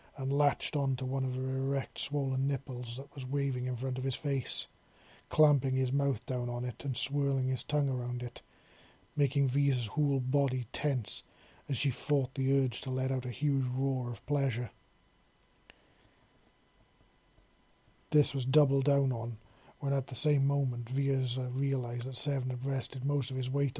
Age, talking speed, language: 40-59, 170 wpm, English